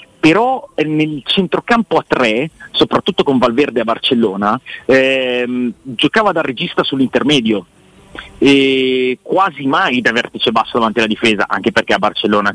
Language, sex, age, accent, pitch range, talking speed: Italian, male, 30-49, native, 115-145 Hz, 135 wpm